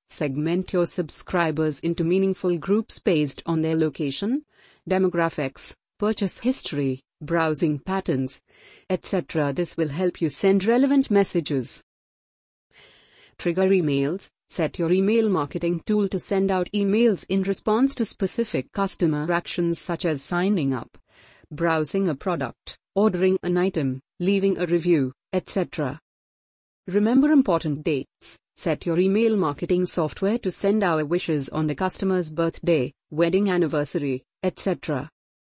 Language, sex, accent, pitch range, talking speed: English, female, Indian, 155-195 Hz, 125 wpm